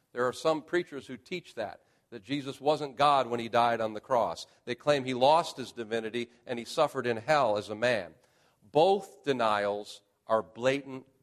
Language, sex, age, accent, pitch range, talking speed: English, male, 50-69, American, 130-180 Hz, 185 wpm